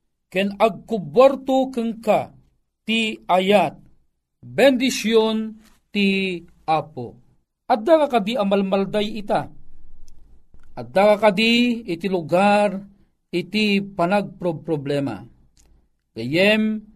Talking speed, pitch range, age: 70 wpm, 175-235 Hz, 40-59